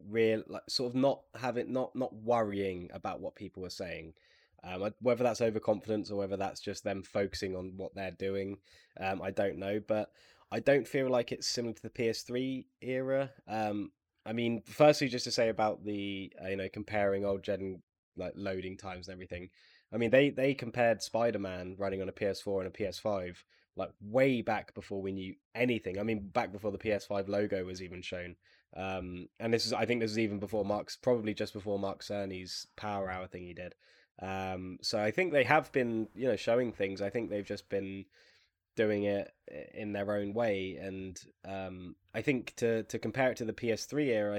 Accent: British